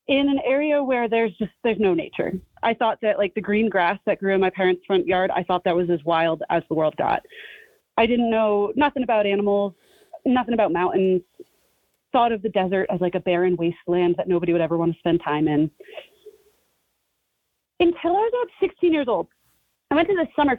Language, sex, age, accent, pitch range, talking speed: English, female, 30-49, American, 185-280 Hz, 210 wpm